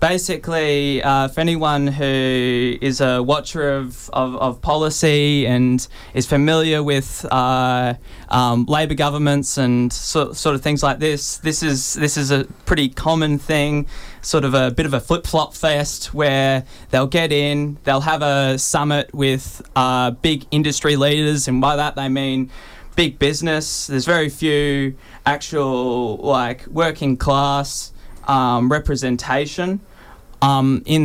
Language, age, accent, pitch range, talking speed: English, 20-39, Australian, 130-150 Hz, 135 wpm